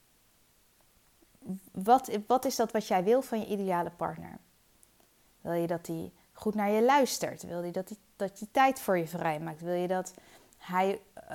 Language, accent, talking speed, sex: Dutch, Dutch, 175 wpm, female